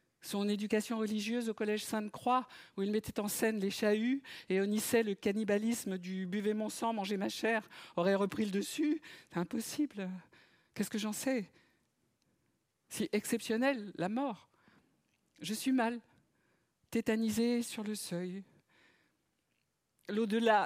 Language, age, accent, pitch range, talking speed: French, 50-69, French, 170-215 Hz, 135 wpm